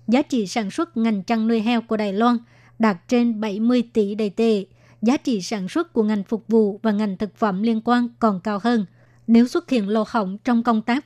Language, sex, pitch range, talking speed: Vietnamese, male, 210-235 Hz, 230 wpm